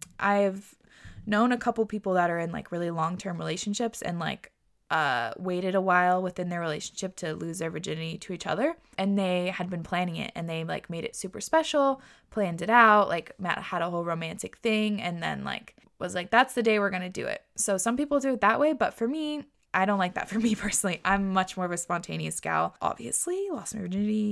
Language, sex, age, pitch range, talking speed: English, female, 20-39, 175-225 Hz, 225 wpm